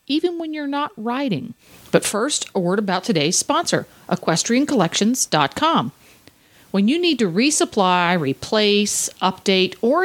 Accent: American